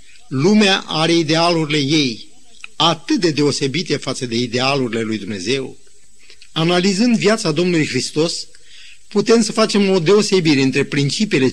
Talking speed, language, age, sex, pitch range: 120 wpm, Romanian, 50-69, male, 140-195 Hz